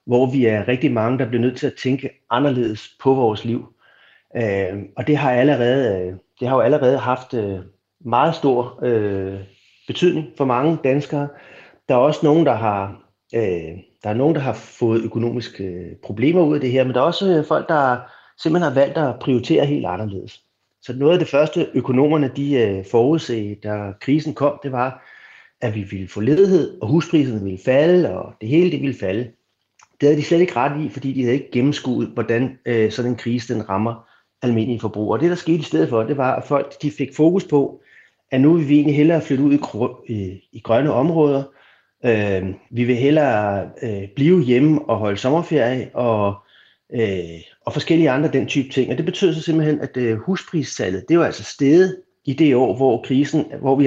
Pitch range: 110-145 Hz